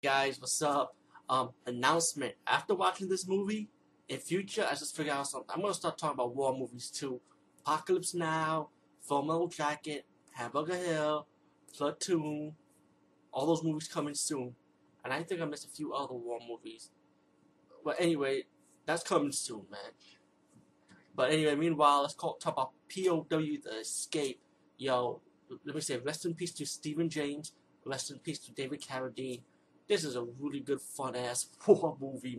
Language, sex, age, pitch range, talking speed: English, male, 30-49, 130-160 Hz, 160 wpm